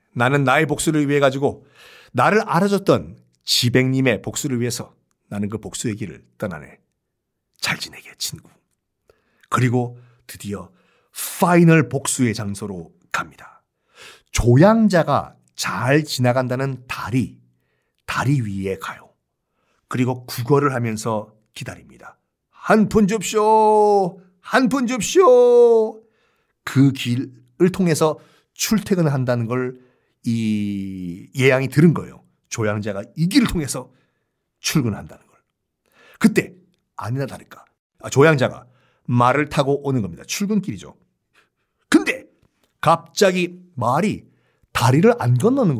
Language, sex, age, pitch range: Korean, male, 50-69, 120-205 Hz